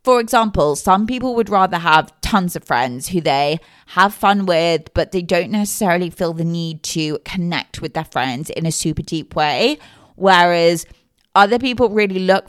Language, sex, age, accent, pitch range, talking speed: English, female, 20-39, British, 160-215 Hz, 180 wpm